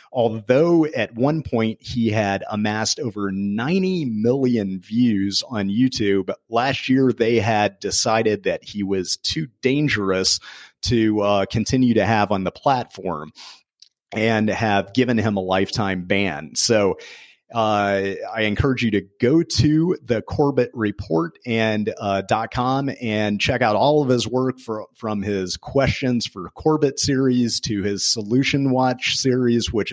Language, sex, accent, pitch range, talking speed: English, male, American, 100-125 Hz, 145 wpm